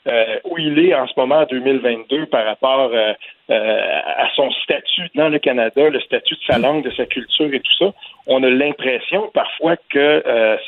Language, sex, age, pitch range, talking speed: French, male, 50-69, 120-180 Hz, 200 wpm